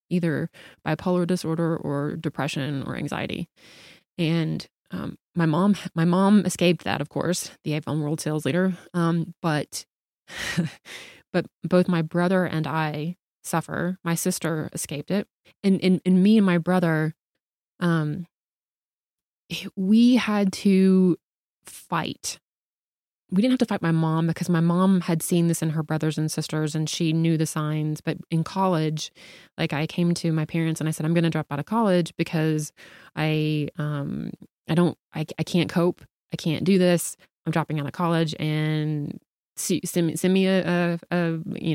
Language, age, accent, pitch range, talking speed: English, 20-39, American, 155-180 Hz, 170 wpm